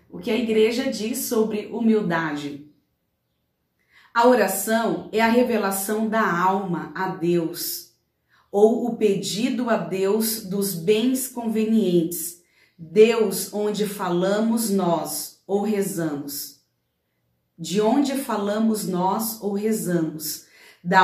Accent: Brazilian